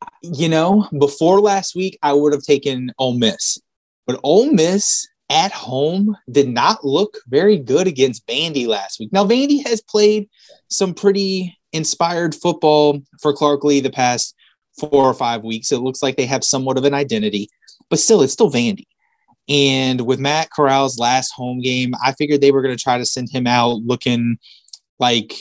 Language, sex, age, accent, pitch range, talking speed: English, male, 30-49, American, 125-170 Hz, 180 wpm